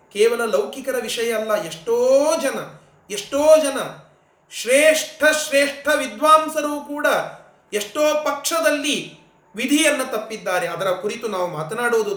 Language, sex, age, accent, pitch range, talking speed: Kannada, male, 30-49, native, 180-280 Hz, 100 wpm